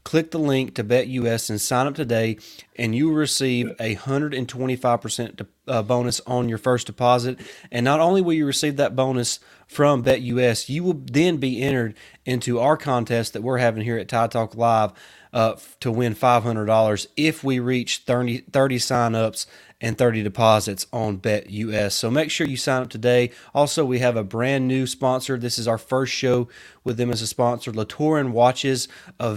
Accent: American